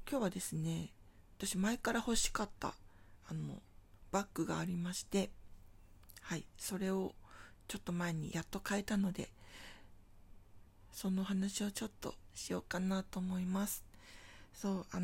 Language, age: Japanese, 40-59